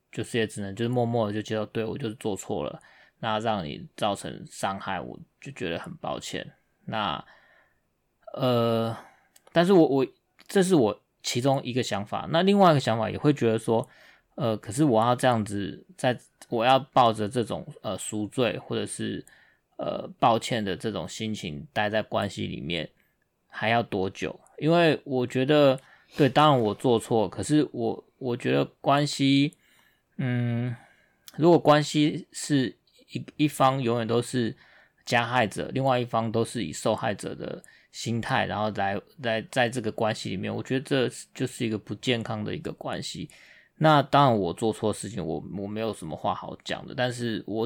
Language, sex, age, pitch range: Chinese, male, 20-39, 110-135 Hz